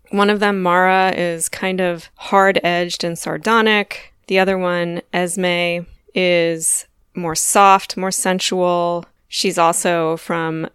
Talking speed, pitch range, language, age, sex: 125 wpm, 170-205 Hz, English, 20-39, female